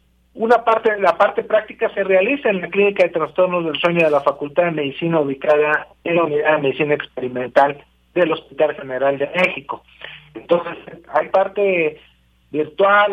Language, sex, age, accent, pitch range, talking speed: Spanish, male, 50-69, Mexican, 145-195 Hz, 160 wpm